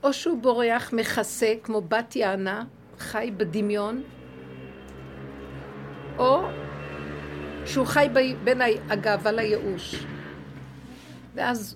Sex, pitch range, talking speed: female, 190-260 Hz, 85 wpm